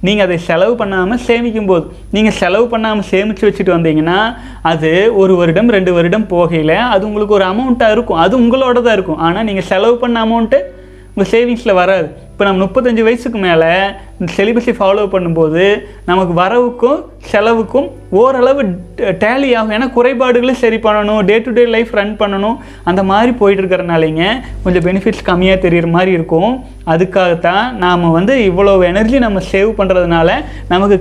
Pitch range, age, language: 185-235 Hz, 20-39, Tamil